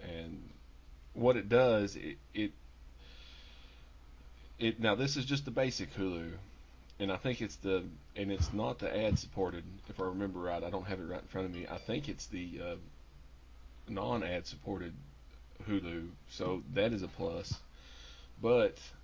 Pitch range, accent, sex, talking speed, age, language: 70-105 Hz, American, male, 165 wpm, 30-49, English